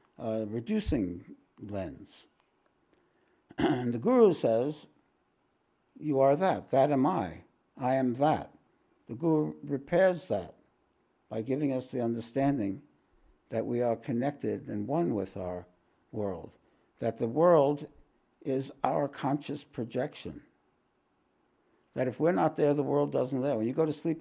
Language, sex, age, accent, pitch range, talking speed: English, male, 60-79, American, 110-140 Hz, 135 wpm